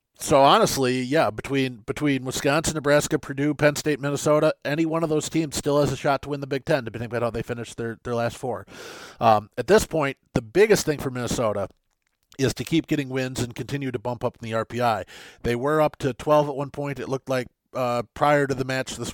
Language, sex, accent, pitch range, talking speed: English, male, American, 115-140 Hz, 230 wpm